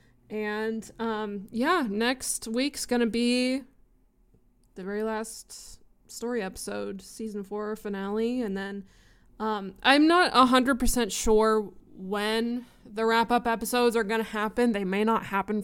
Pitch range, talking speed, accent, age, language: 195-240 Hz, 145 wpm, American, 20-39, English